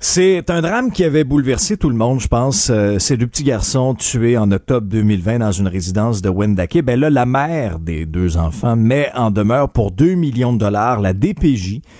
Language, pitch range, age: French, 105-155 Hz, 40-59